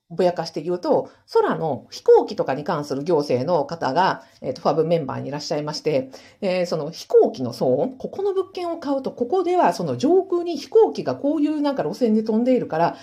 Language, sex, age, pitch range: Japanese, female, 50-69, 175-295 Hz